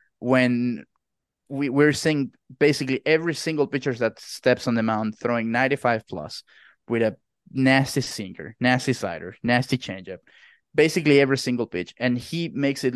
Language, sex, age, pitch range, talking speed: English, male, 20-39, 115-140 Hz, 140 wpm